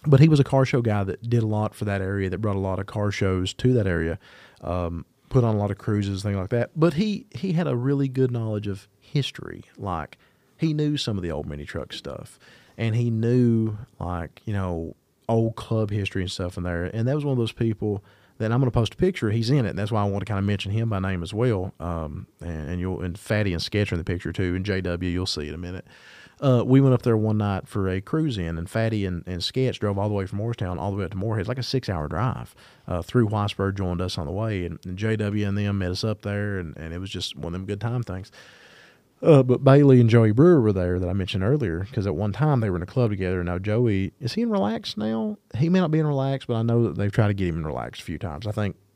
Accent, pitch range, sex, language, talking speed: American, 95-120 Hz, male, English, 285 wpm